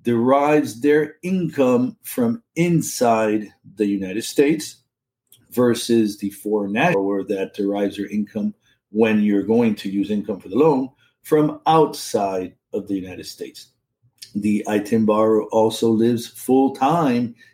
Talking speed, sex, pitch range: 130 wpm, male, 105-130 Hz